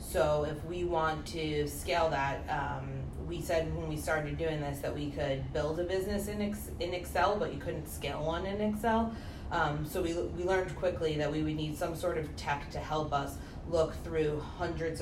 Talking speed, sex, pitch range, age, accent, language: 210 wpm, female, 145-170 Hz, 30-49, American, English